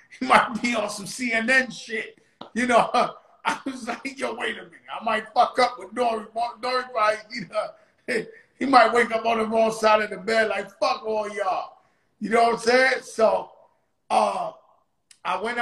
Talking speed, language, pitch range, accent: 185 wpm, English, 170-220 Hz, American